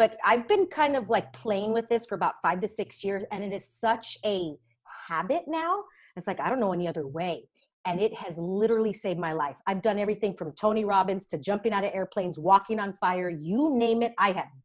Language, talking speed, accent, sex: English, 230 wpm, American, female